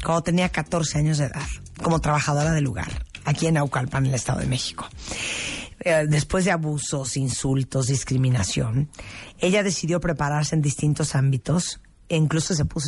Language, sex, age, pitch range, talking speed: Spanish, female, 40-59, 135-165 Hz, 160 wpm